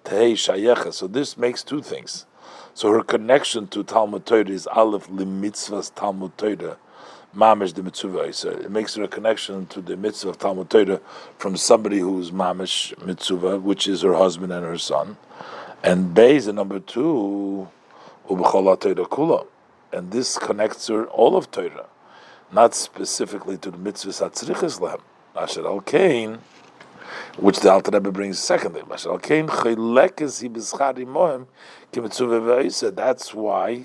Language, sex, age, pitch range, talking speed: English, male, 50-69, 95-115 Hz, 135 wpm